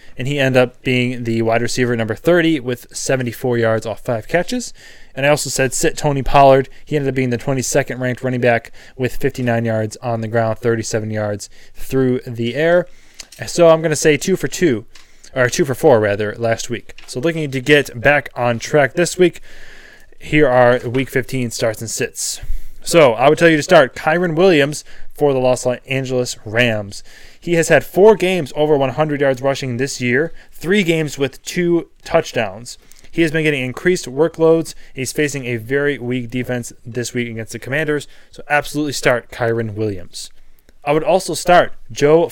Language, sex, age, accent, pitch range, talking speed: English, male, 20-39, American, 120-155 Hz, 185 wpm